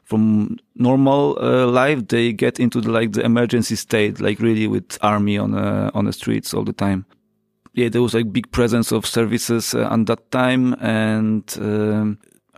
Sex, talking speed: male, 180 wpm